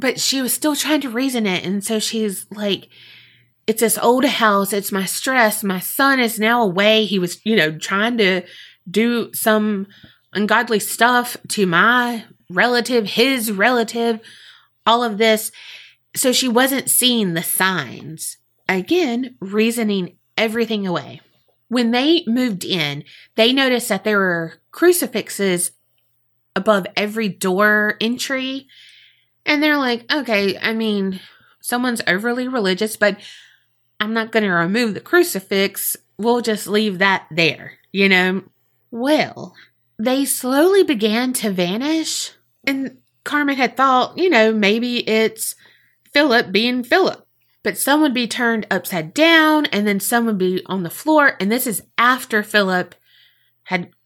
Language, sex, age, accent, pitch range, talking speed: English, female, 30-49, American, 185-245 Hz, 140 wpm